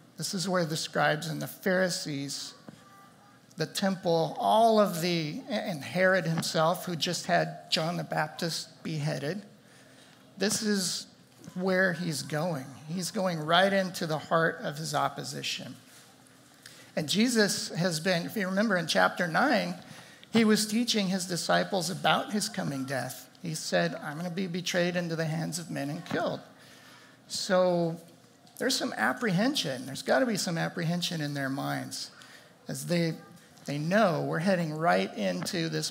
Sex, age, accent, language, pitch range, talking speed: male, 50-69, American, English, 155-190 Hz, 155 wpm